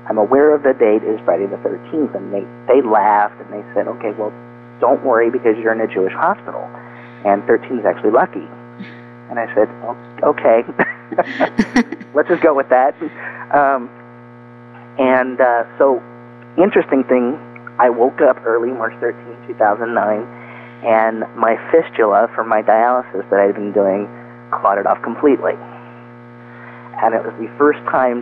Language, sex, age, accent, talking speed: English, male, 40-59, American, 155 wpm